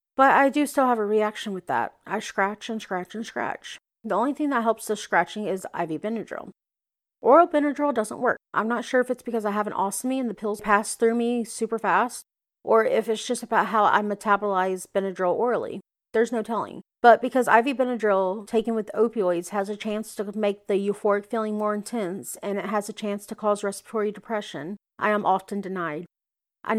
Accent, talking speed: American, 205 wpm